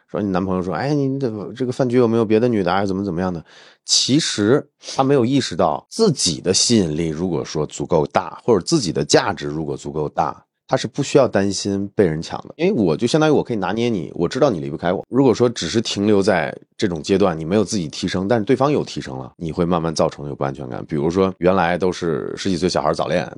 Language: Chinese